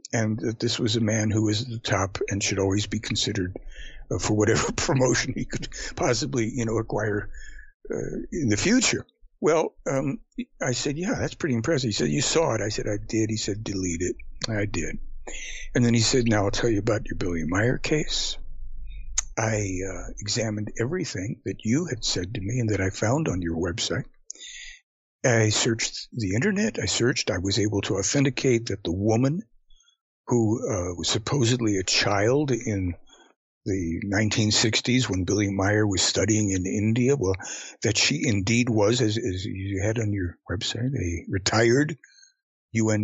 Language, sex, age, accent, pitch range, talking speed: English, male, 60-79, American, 100-130 Hz, 175 wpm